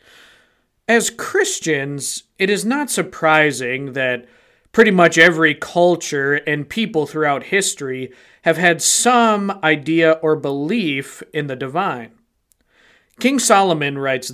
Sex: male